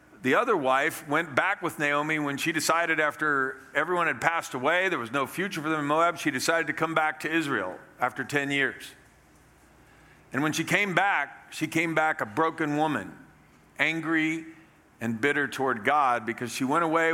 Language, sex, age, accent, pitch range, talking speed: English, male, 50-69, American, 125-160 Hz, 185 wpm